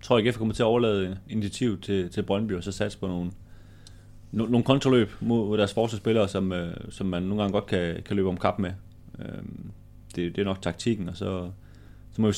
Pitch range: 95-110 Hz